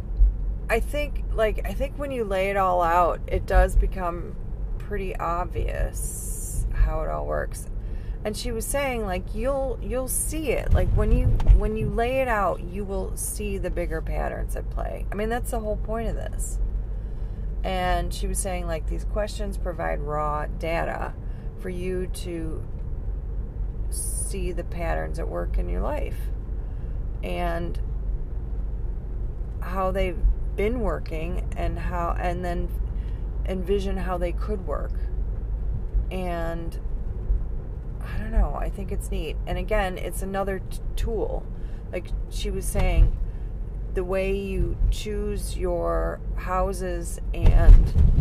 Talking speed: 140 wpm